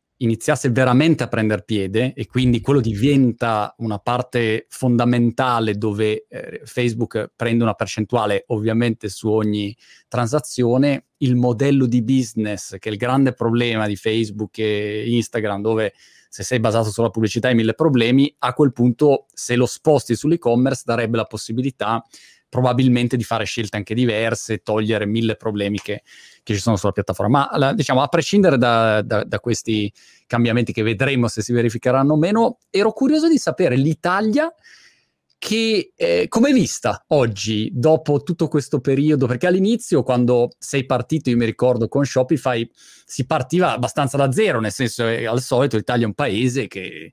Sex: male